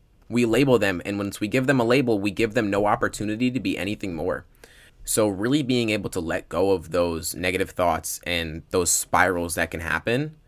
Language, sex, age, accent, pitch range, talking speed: English, male, 20-39, American, 90-115 Hz, 205 wpm